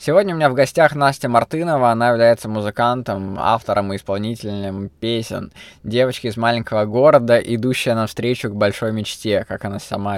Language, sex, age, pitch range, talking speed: Russian, male, 20-39, 100-120 Hz, 155 wpm